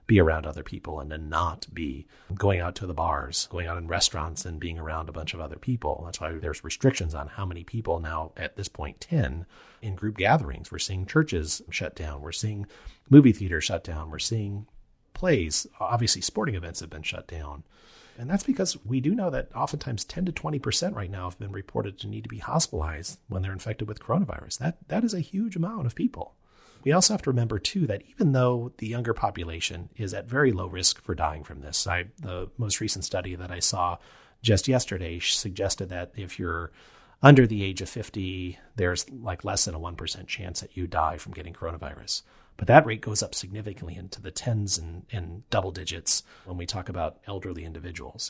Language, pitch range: English, 85-115 Hz